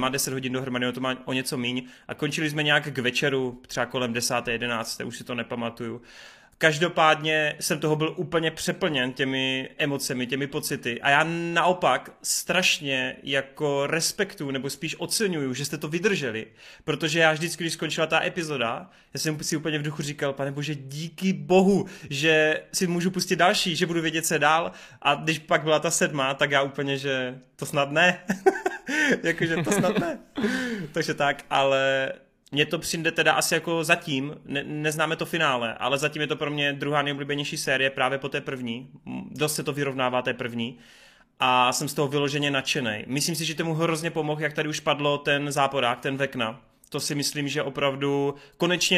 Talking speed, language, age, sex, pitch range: 180 wpm, Czech, 30-49, male, 135-165 Hz